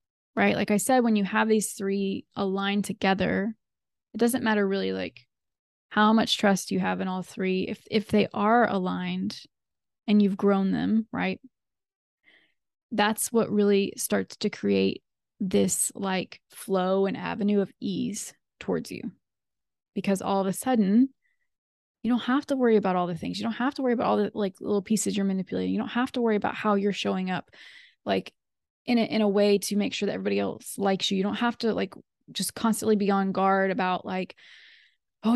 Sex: female